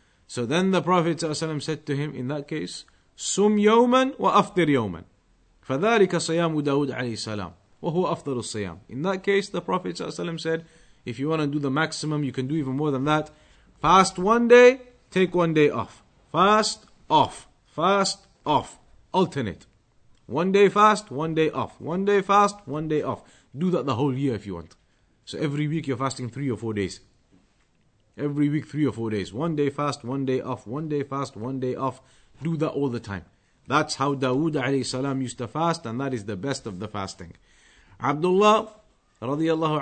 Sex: male